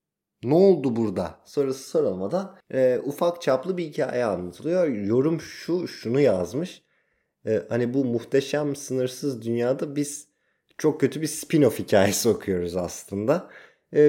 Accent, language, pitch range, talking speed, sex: native, Turkish, 100-145 Hz, 130 wpm, male